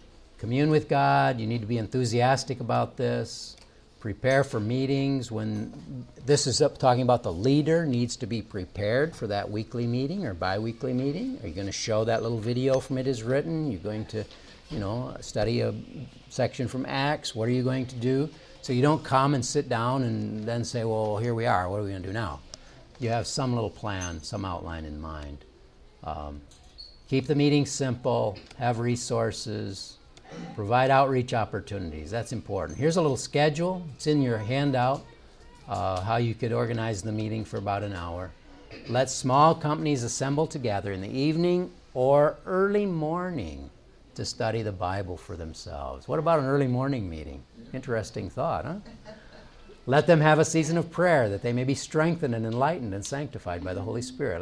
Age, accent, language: 60-79, American, English